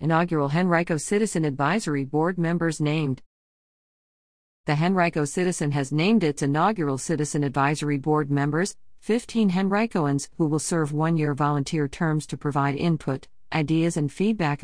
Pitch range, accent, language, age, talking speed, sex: 145-185 Hz, American, English, 50-69, 130 wpm, female